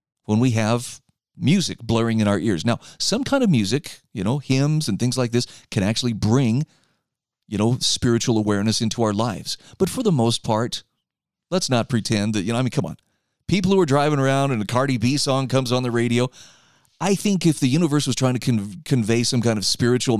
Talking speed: 215 wpm